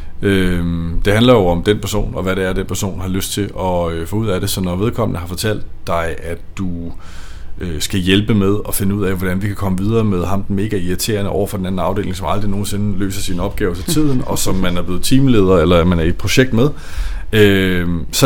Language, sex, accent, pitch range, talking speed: Danish, male, native, 85-105 Hz, 235 wpm